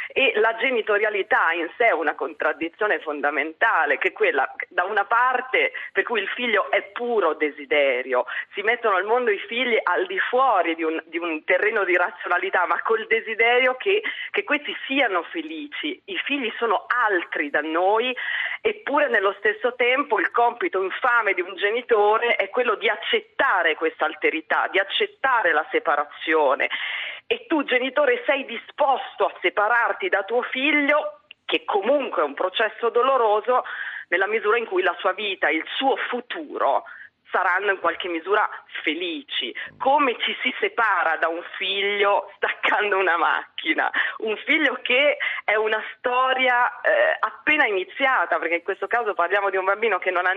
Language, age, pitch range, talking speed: Italian, 40-59, 195-295 Hz, 155 wpm